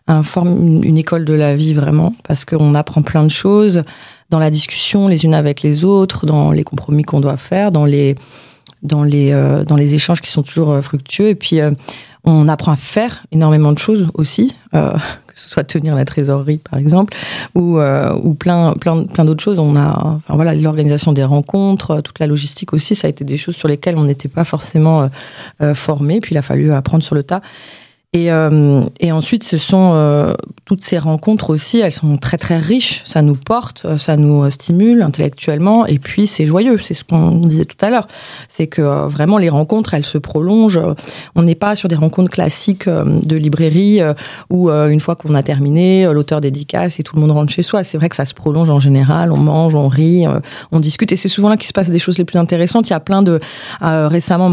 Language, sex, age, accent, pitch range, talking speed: French, female, 30-49, French, 150-180 Hz, 225 wpm